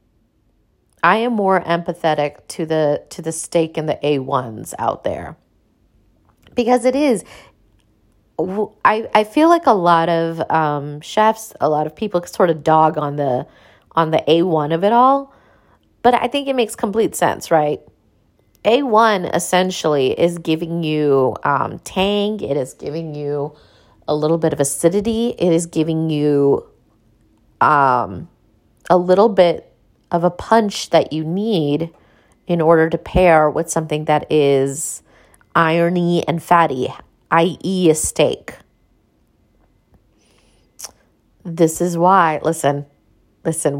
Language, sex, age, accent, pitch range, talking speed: English, female, 30-49, American, 145-185 Hz, 140 wpm